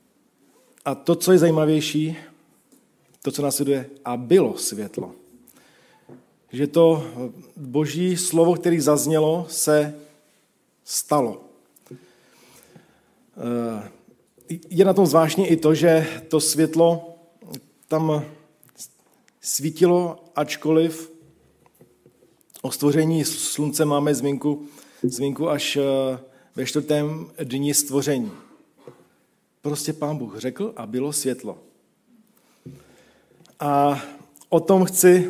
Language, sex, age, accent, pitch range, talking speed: Czech, male, 40-59, native, 145-170 Hz, 90 wpm